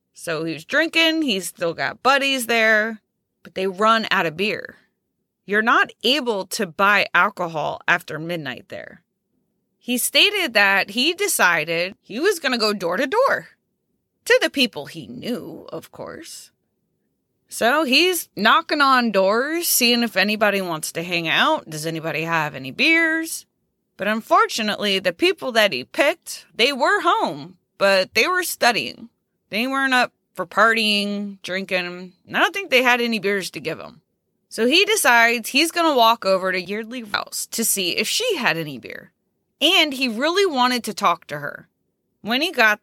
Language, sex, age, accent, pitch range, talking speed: English, female, 20-39, American, 190-270 Hz, 170 wpm